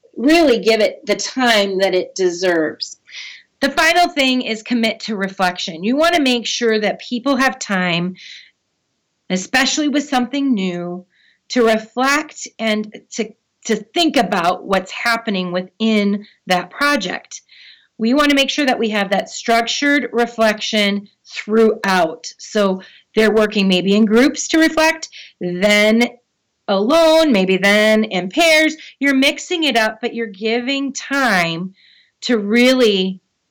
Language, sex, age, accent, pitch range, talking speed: English, female, 30-49, American, 190-265 Hz, 135 wpm